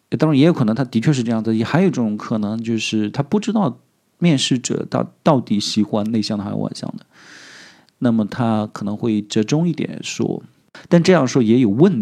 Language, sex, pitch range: Chinese, male, 110-150 Hz